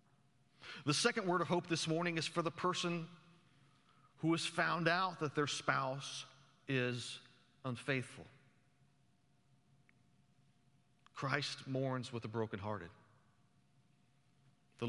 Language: English